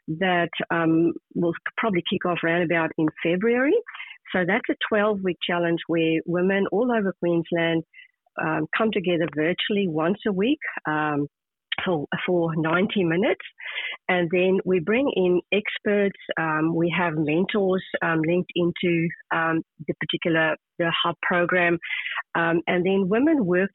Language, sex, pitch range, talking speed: English, female, 165-200 Hz, 140 wpm